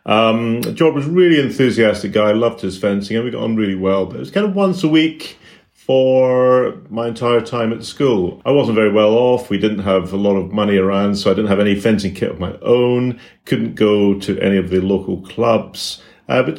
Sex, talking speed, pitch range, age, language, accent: male, 230 wpm, 95-120 Hz, 40-59, English, British